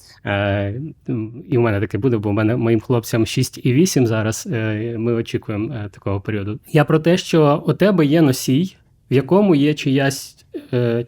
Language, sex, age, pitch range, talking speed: Ukrainian, male, 20-39, 115-150 Hz, 160 wpm